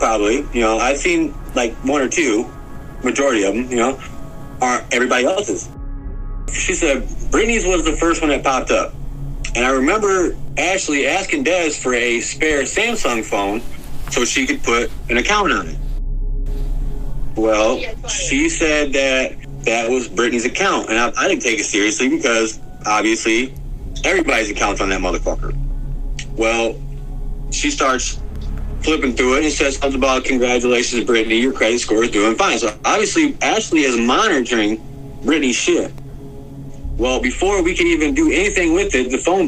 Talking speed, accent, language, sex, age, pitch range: 160 wpm, American, English, male, 30-49, 130-195 Hz